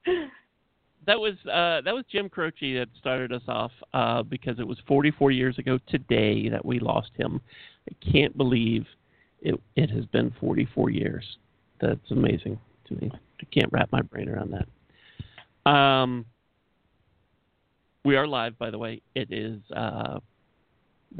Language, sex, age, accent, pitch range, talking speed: English, male, 40-59, American, 120-150 Hz, 150 wpm